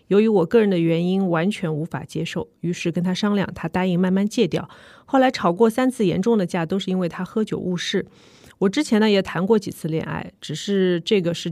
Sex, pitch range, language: female, 170-215 Hz, Chinese